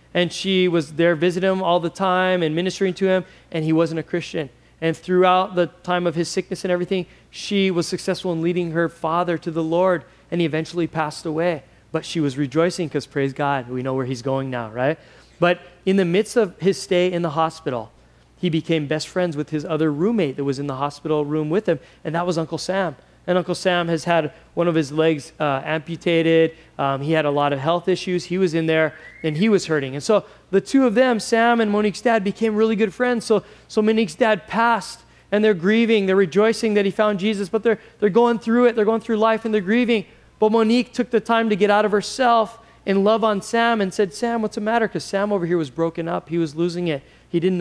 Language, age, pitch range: English, 20-39, 160-210 Hz